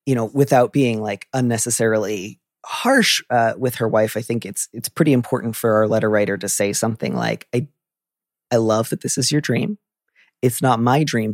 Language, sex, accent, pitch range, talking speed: English, male, American, 110-130 Hz, 195 wpm